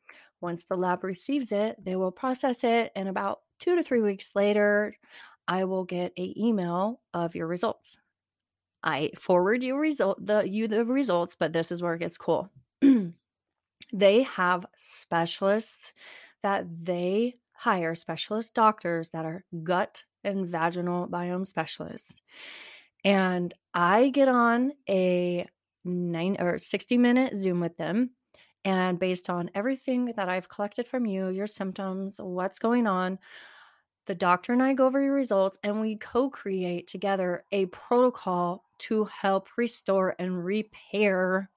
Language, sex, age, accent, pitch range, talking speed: English, female, 30-49, American, 180-230 Hz, 145 wpm